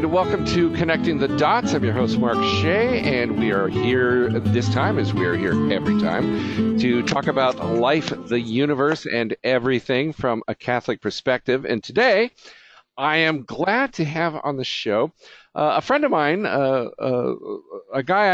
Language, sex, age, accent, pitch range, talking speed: English, male, 50-69, American, 115-155 Hz, 175 wpm